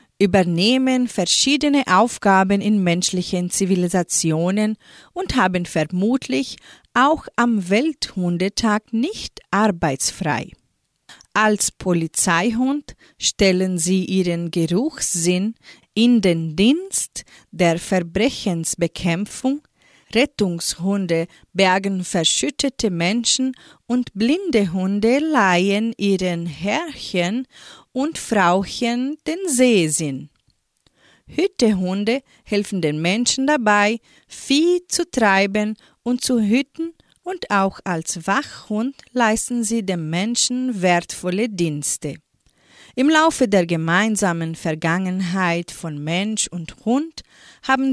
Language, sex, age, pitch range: German, female, 30-49, 180-250 Hz